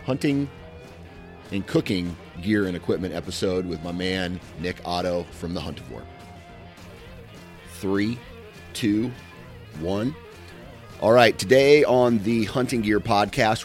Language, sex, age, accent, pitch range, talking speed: English, male, 30-49, American, 85-105 Hz, 125 wpm